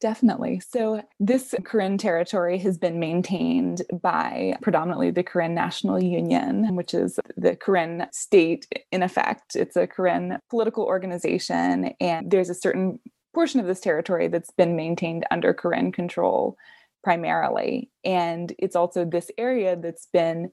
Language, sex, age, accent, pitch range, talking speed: English, female, 20-39, American, 170-205 Hz, 140 wpm